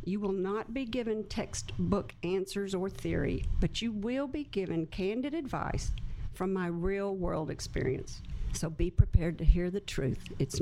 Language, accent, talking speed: English, American, 165 wpm